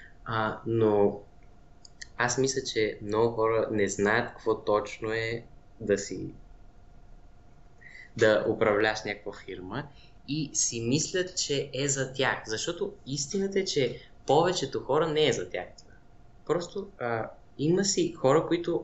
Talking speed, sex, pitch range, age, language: 130 wpm, male, 110-135 Hz, 20-39, Bulgarian